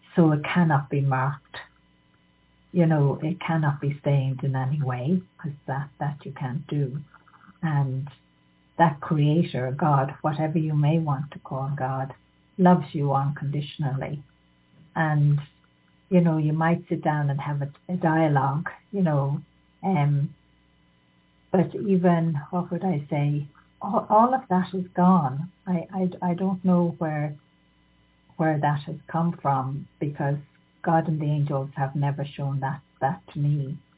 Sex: female